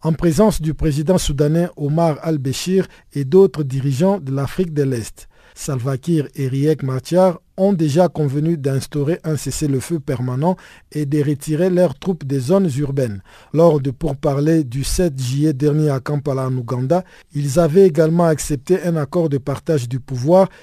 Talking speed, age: 160 wpm, 50-69